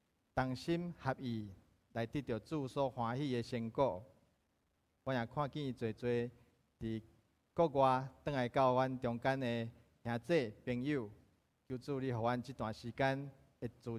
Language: Chinese